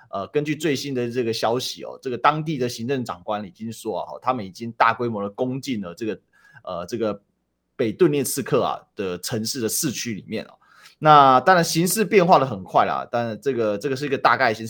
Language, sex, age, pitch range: Chinese, male, 30-49, 115-165 Hz